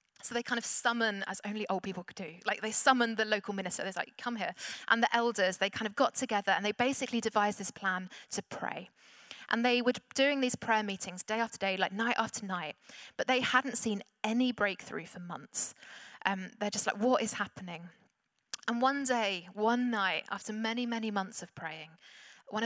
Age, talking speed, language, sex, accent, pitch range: 20-39, 205 wpm, English, female, British, 185-225 Hz